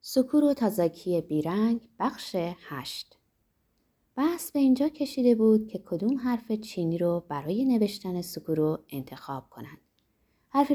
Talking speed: 125 wpm